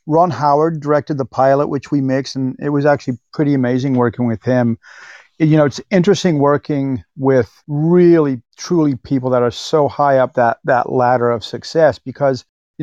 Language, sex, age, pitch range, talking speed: English, male, 40-59, 130-175 Hz, 180 wpm